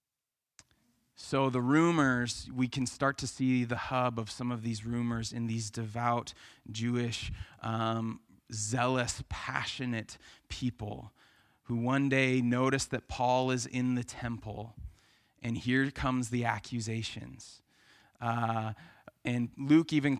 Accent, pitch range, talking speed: American, 115-135 Hz, 125 wpm